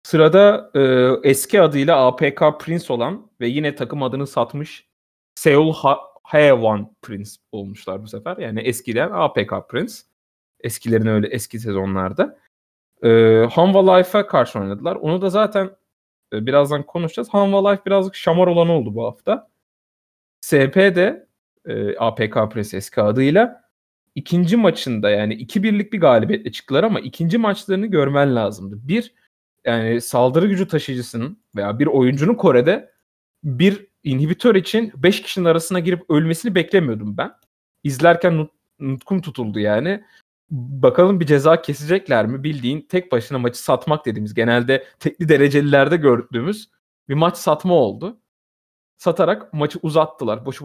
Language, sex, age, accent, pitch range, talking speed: Turkish, male, 30-49, native, 115-180 Hz, 125 wpm